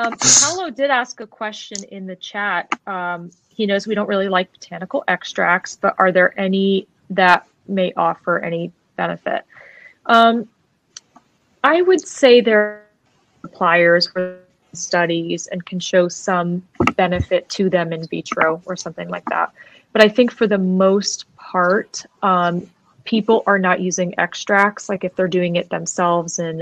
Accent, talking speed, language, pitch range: American, 155 wpm, English, 180-210 Hz